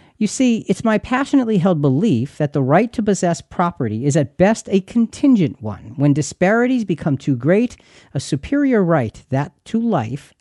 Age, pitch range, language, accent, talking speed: 50-69, 130-175 Hz, English, American, 175 wpm